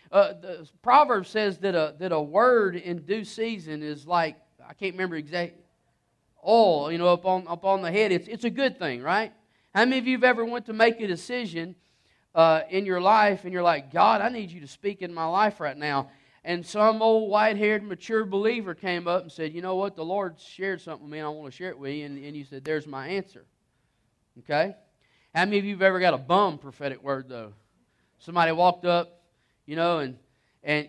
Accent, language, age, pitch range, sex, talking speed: American, English, 40-59, 160-210 Hz, male, 225 wpm